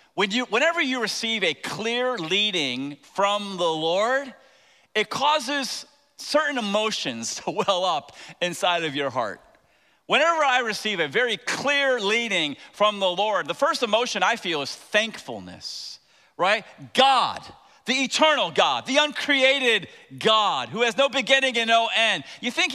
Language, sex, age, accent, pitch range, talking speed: English, male, 40-59, American, 215-280 Hz, 140 wpm